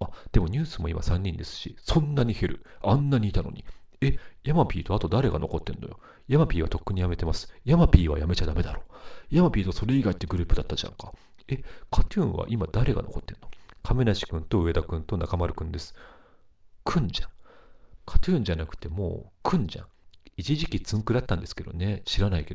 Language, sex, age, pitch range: Japanese, male, 40-59, 85-110 Hz